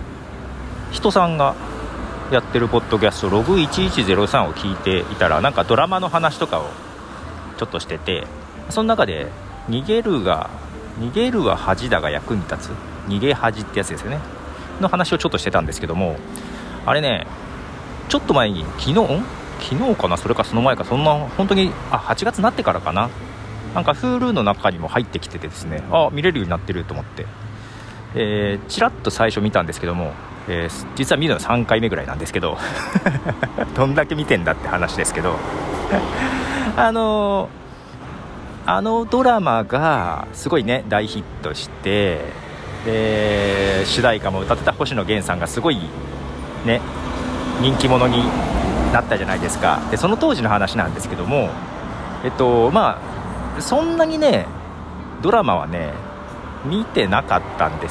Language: Japanese